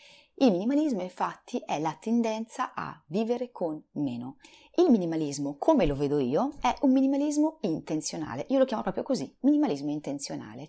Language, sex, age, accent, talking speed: Italian, female, 30-49, native, 150 wpm